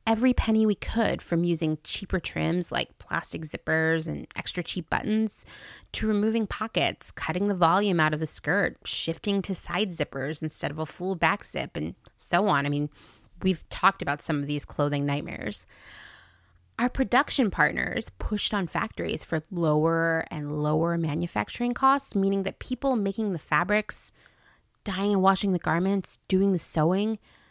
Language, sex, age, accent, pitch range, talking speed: English, female, 20-39, American, 155-215 Hz, 160 wpm